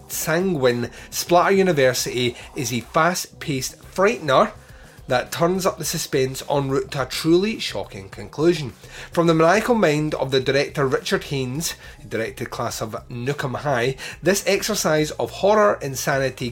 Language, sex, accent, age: English, male, British, 30-49